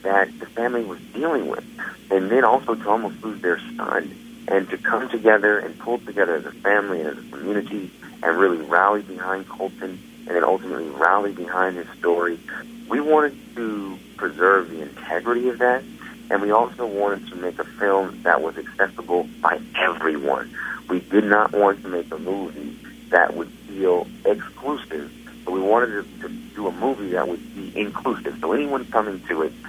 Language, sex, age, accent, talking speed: English, male, 50-69, American, 180 wpm